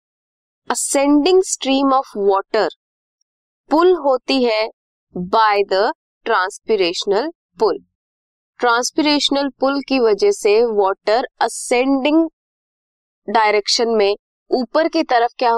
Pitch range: 225-335 Hz